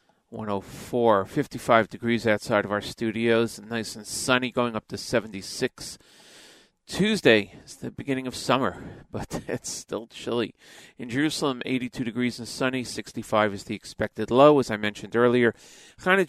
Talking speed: 145 wpm